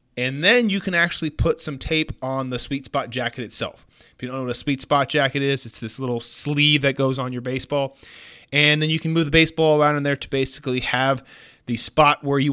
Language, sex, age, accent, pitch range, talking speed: English, male, 30-49, American, 115-155 Hz, 240 wpm